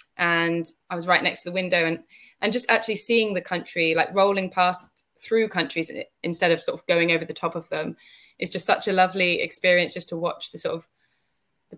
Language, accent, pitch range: English, British, 160-195 Hz